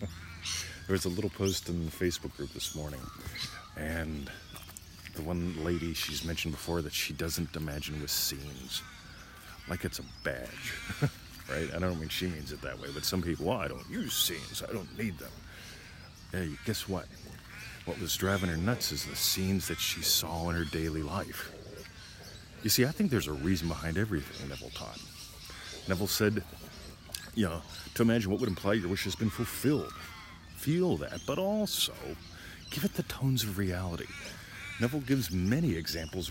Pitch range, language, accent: 80-100 Hz, English, American